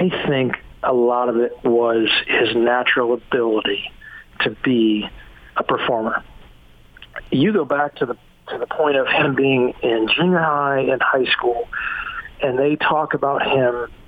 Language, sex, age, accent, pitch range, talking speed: English, male, 40-59, American, 125-155 Hz, 155 wpm